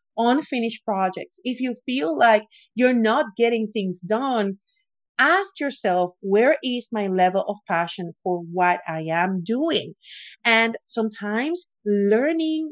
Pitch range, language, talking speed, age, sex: 195-240 Hz, English, 125 wpm, 40-59, female